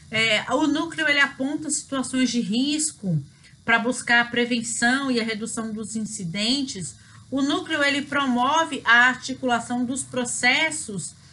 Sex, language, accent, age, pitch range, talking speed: female, Portuguese, Brazilian, 40-59, 205-270 Hz, 115 wpm